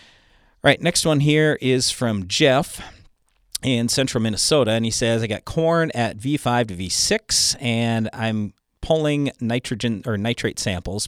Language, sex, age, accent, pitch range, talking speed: English, male, 40-59, American, 110-135 Hz, 145 wpm